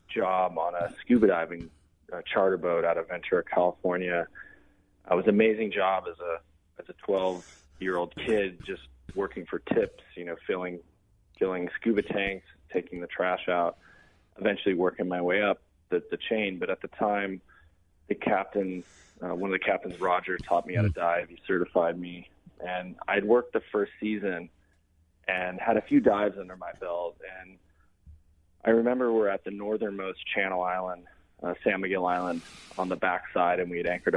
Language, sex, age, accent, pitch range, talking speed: English, male, 20-39, American, 85-95 Hz, 175 wpm